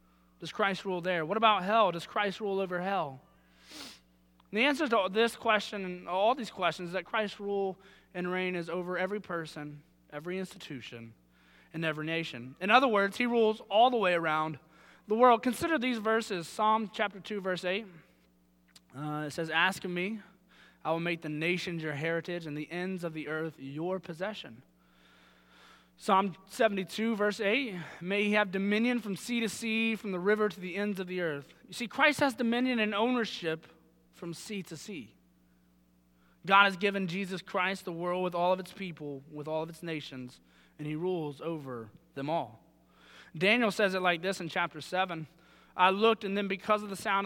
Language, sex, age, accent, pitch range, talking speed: English, male, 20-39, American, 155-200 Hz, 185 wpm